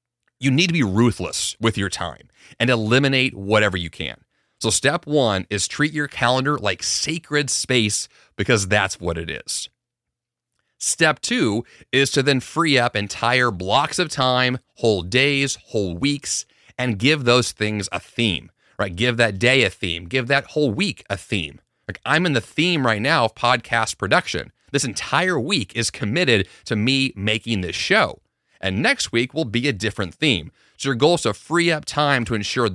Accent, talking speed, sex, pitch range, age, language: American, 180 wpm, male, 100-140 Hz, 30-49, English